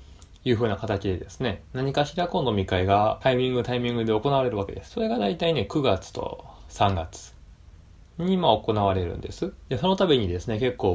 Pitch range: 85-115 Hz